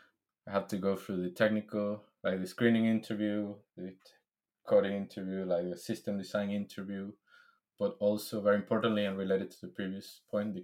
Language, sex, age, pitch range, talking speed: English, male, 20-39, 95-110 Hz, 170 wpm